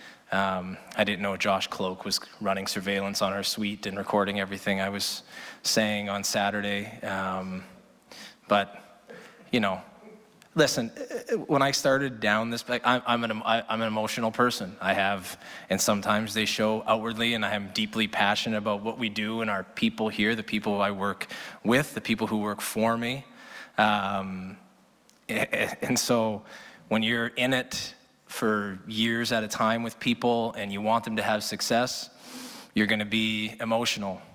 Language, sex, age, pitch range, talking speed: English, male, 20-39, 100-115 Hz, 160 wpm